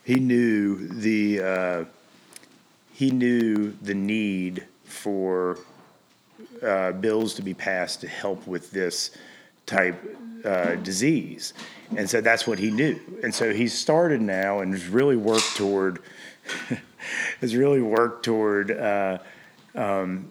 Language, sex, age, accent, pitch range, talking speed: English, male, 40-59, American, 90-110 Hz, 125 wpm